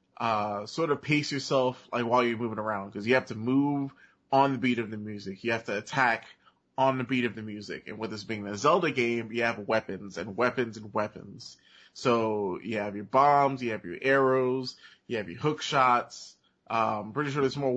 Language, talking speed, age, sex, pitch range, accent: English, 220 wpm, 20-39, male, 110-130 Hz, American